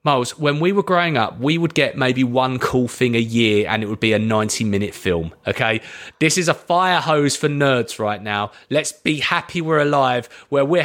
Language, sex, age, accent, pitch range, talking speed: English, male, 30-49, British, 135-175 Hz, 215 wpm